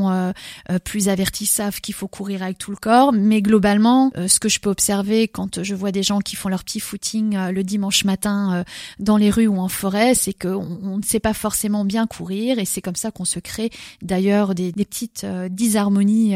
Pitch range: 195-225 Hz